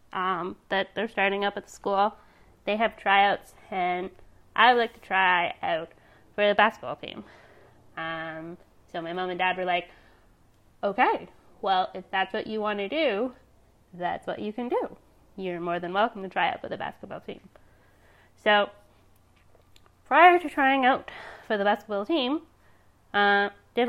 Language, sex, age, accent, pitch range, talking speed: English, female, 20-39, American, 180-215 Hz, 165 wpm